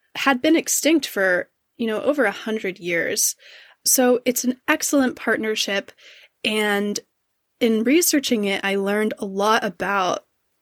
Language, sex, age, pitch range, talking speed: English, female, 20-39, 195-255 Hz, 135 wpm